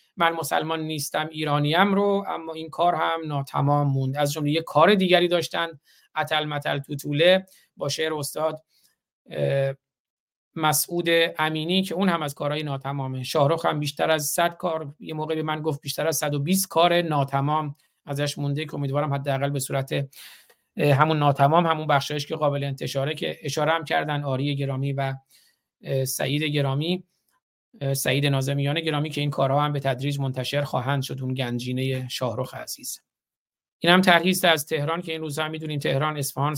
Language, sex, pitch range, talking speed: Persian, male, 140-165 Hz, 165 wpm